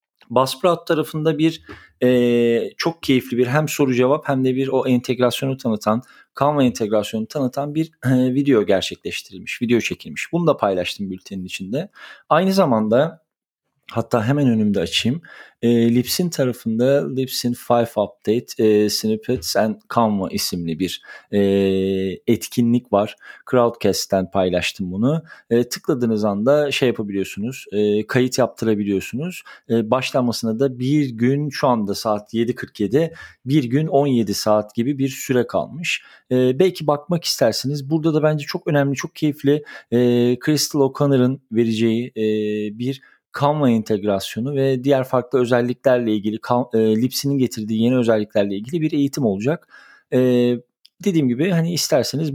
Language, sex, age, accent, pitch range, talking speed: Turkish, male, 40-59, native, 110-140 Hz, 135 wpm